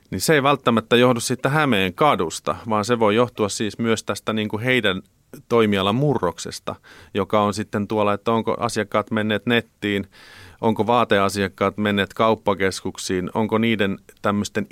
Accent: native